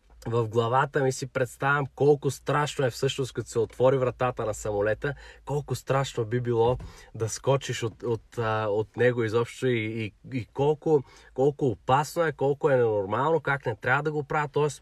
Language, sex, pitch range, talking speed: Bulgarian, male, 125-150 Hz, 180 wpm